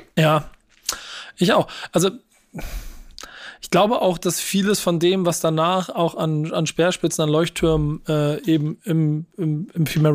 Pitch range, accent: 145-160 Hz, German